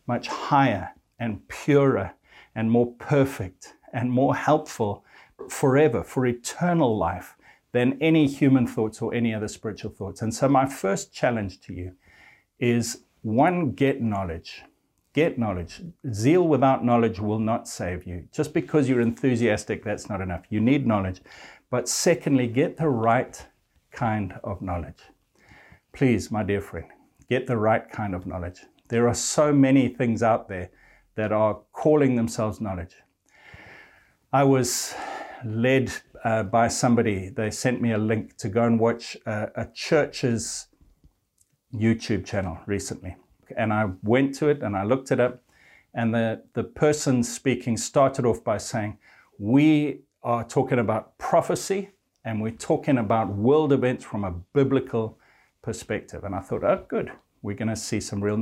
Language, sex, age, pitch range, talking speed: English, male, 60-79, 105-135 Hz, 155 wpm